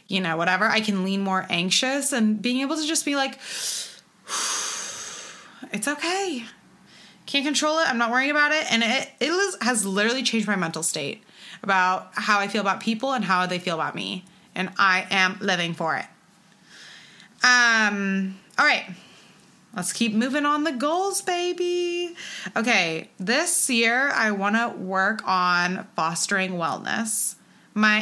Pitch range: 195-245 Hz